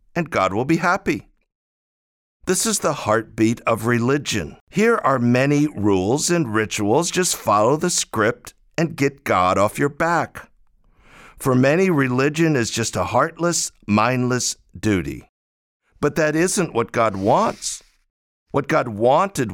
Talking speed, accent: 140 wpm, American